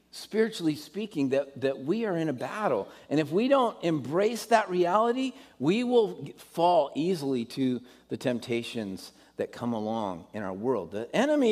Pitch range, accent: 95-155 Hz, American